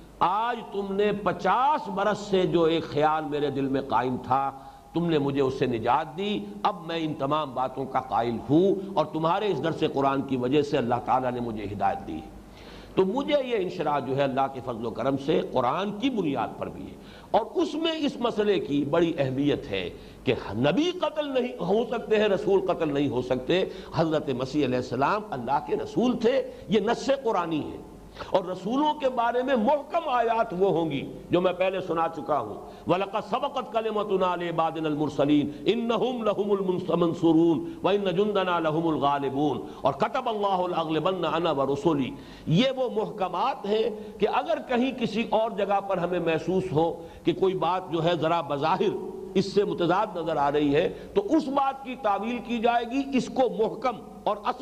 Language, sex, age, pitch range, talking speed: English, male, 60-79, 150-220 Hz, 140 wpm